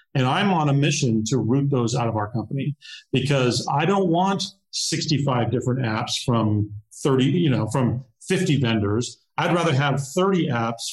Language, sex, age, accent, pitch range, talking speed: English, male, 40-59, American, 120-160 Hz, 170 wpm